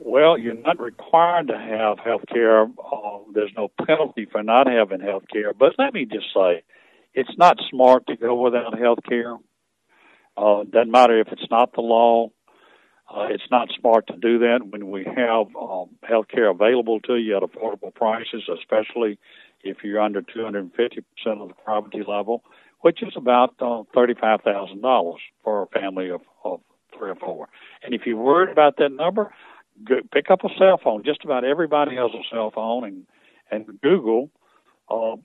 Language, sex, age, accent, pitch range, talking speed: English, male, 60-79, American, 110-145 Hz, 170 wpm